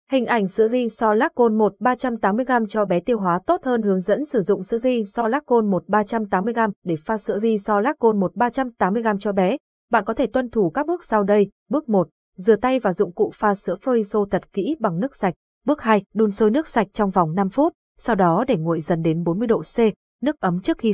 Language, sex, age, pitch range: Vietnamese, female, 20-39, 190-240 Hz